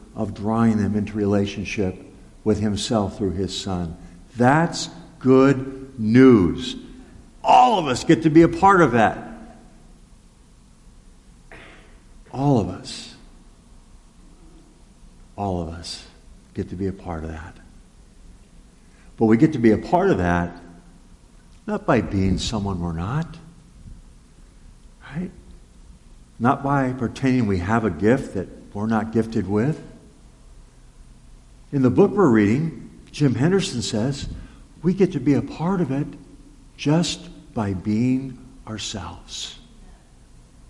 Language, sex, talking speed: English, male, 125 wpm